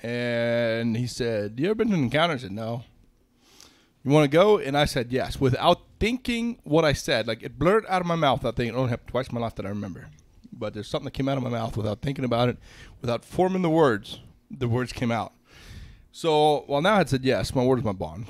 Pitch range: 115-150 Hz